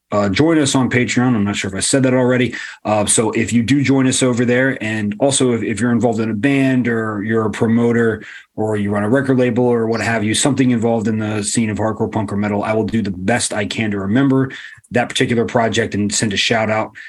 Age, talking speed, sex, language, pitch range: 30-49, 255 wpm, male, English, 100-120 Hz